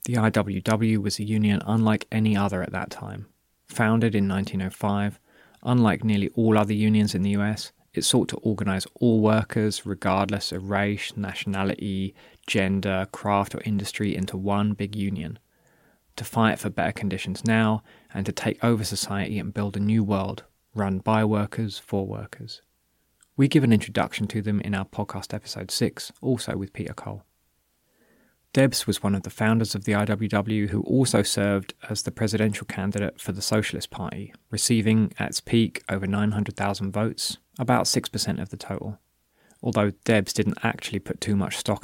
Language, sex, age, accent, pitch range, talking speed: English, male, 20-39, British, 100-110 Hz, 165 wpm